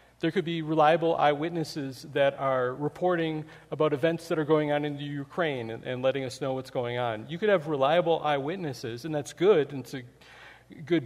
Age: 40-59